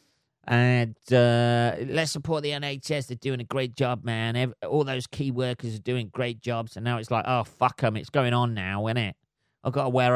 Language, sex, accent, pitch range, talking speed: English, male, British, 110-135 Hz, 220 wpm